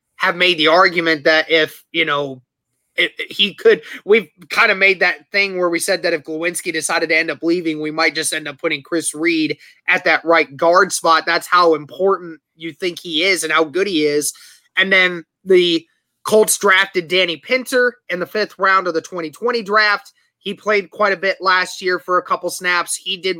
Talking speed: 205 wpm